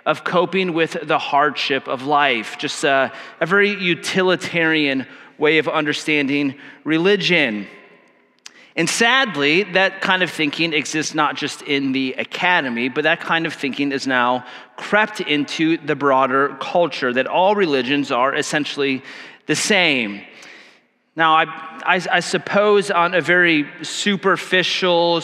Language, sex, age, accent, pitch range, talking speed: English, male, 30-49, American, 150-200 Hz, 135 wpm